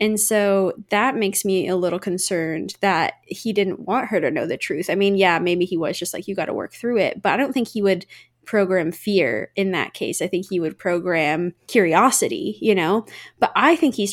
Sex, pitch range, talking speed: female, 175-210 Hz, 230 wpm